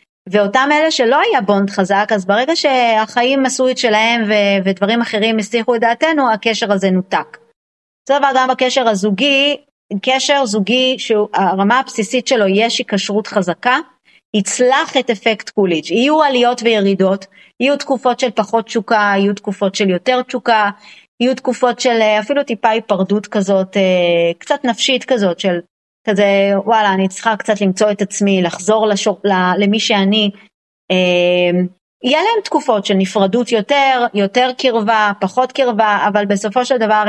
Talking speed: 145 wpm